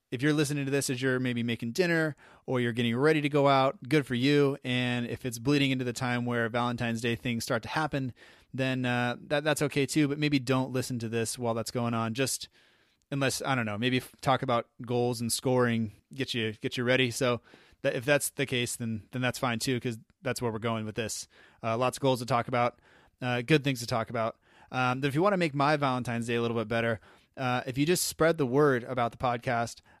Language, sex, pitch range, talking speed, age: English, male, 120-140 Hz, 240 wpm, 20-39